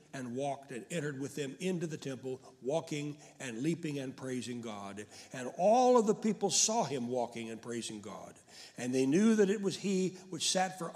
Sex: male